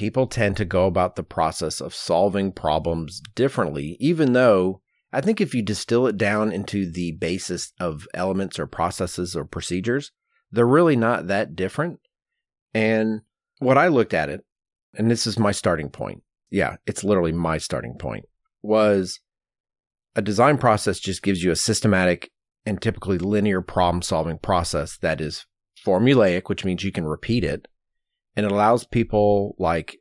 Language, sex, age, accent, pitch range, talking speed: English, male, 40-59, American, 90-115 Hz, 160 wpm